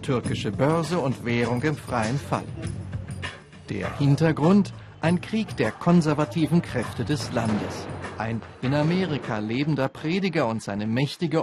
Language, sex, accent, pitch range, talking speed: German, male, German, 125-160 Hz, 125 wpm